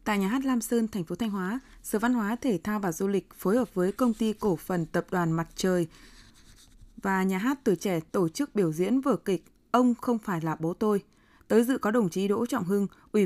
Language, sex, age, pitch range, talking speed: Vietnamese, female, 20-39, 185-235 Hz, 245 wpm